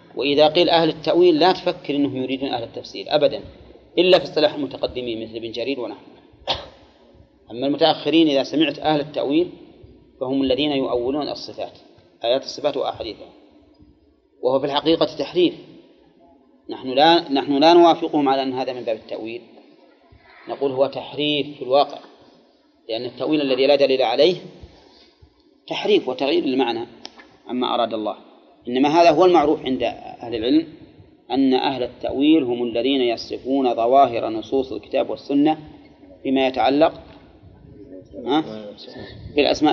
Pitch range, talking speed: 130-170 Hz, 125 wpm